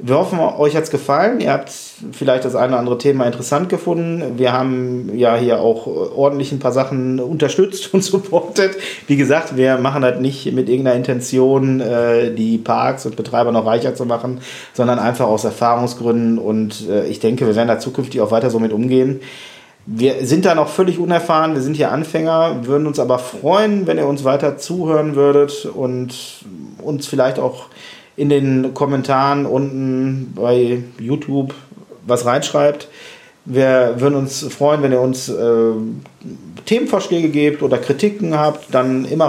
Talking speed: 165 wpm